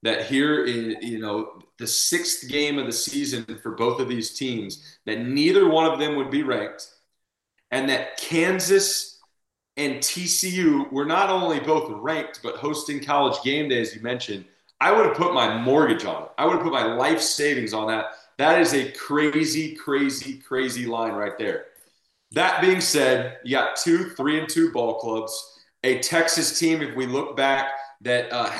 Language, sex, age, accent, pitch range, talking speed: English, male, 30-49, American, 120-160 Hz, 185 wpm